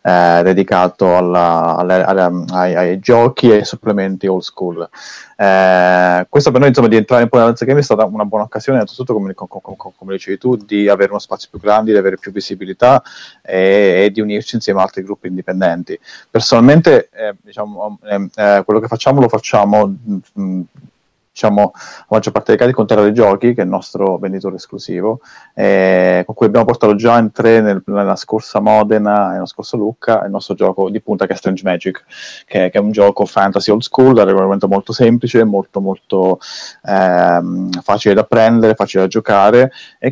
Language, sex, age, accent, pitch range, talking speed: Italian, male, 30-49, native, 95-110 Hz, 190 wpm